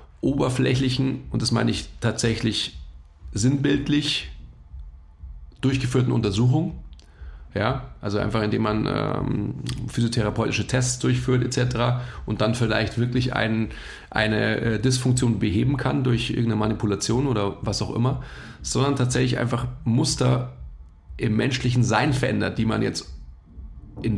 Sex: male